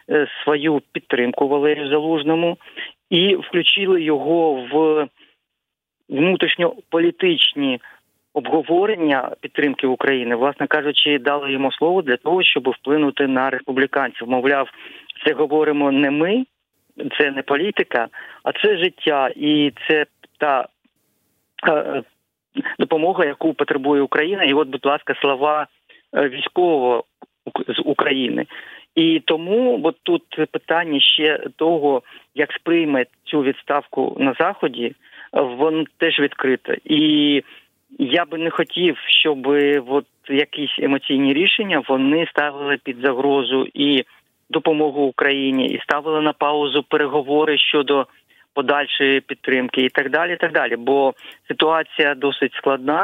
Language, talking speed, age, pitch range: Ukrainian, 110 wpm, 40-59, 140-165 Hz